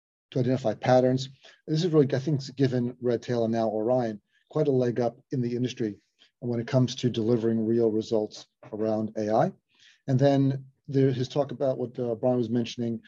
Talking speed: 180 wpm